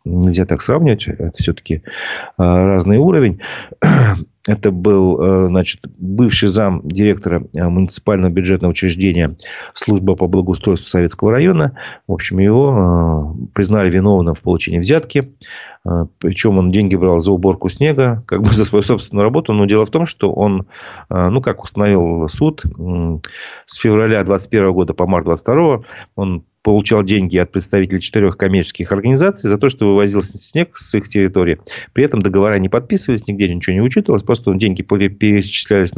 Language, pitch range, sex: Russian, 90-105 Hz, male